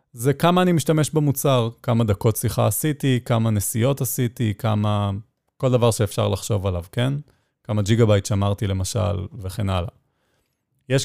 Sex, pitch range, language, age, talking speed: male, 105-135 Hz, Hebrew, 30-49, 145 wpm